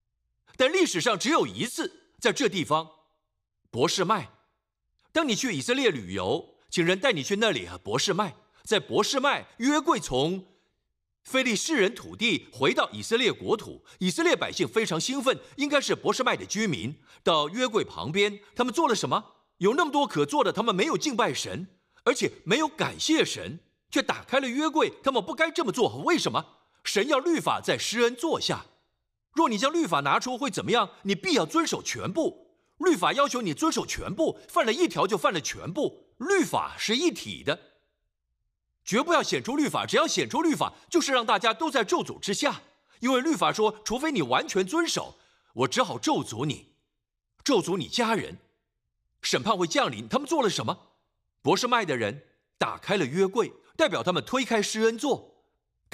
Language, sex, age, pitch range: Chinese, male, 50-69, 195-315 Hz